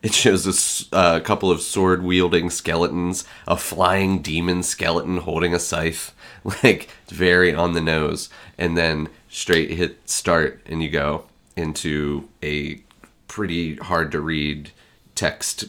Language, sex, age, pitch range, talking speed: English, male, 30-49, 85-105 Hz, 125 wpm